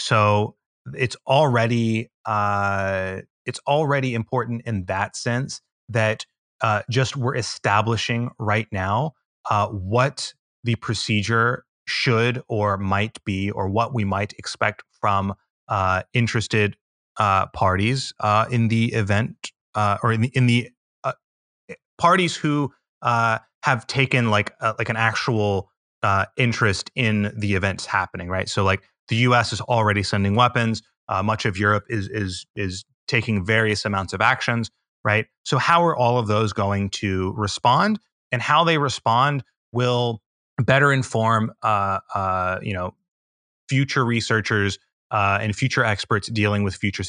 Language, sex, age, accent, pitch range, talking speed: English, male, 30-49, American, 100-125 Hz, 145 wpm